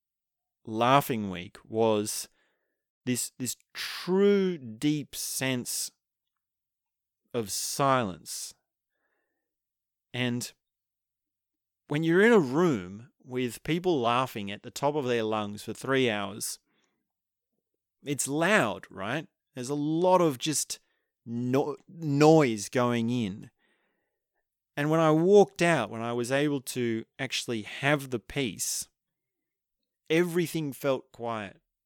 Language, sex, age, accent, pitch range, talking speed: English, male, 30-49, Australian, 110-145 Hz, 105 wpm